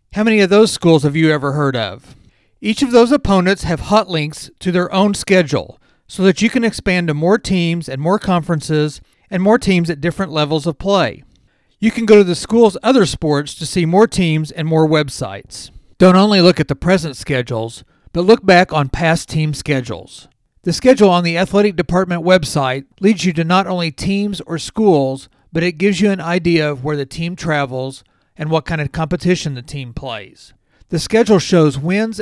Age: 40-59